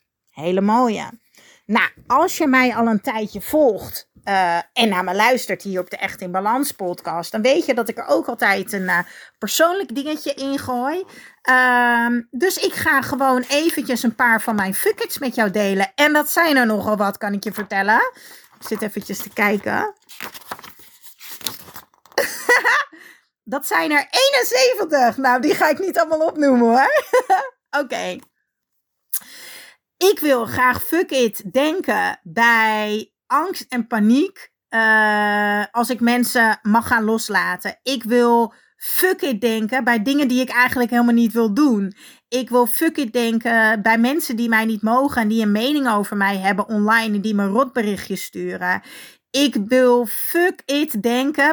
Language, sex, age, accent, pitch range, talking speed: Dutch, female, 40-59, Dutch, 215-275 Hz, 160 wpm